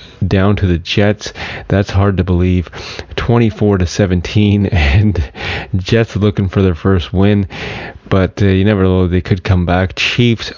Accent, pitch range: American, 90-105 Hz